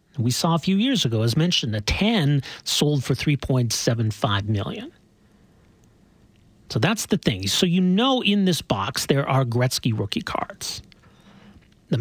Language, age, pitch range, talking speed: English, 40-59, 125-180 Hz, 150 wpm